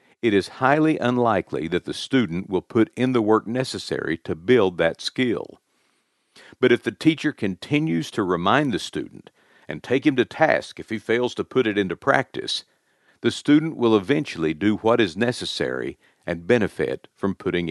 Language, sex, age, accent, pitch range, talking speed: English, male, 50-69, American, 100-140 Hz, 175 wpm